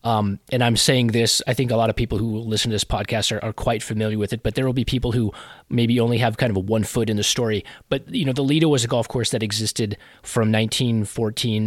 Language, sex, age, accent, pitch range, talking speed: English, male, 30-49, American, 105-120 Hz, 260 wpm